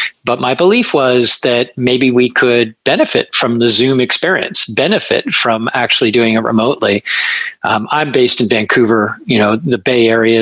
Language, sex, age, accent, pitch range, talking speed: English, male, 50-69, American, 110-125 Hz, 165 wpm